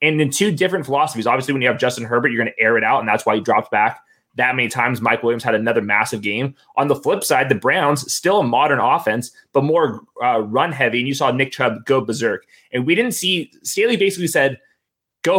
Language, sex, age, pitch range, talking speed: English, male, 20-39, 120-155 Hz, 240 wpm